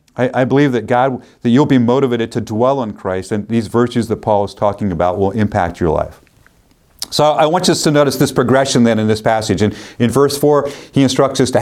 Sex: male